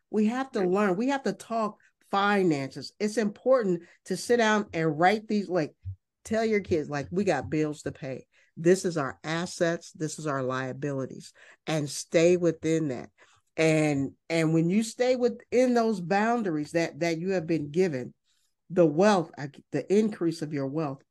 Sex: male